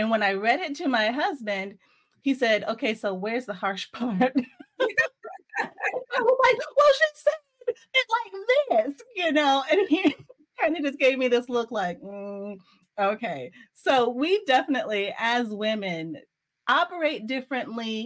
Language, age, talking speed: English, 30-49, 155 wpm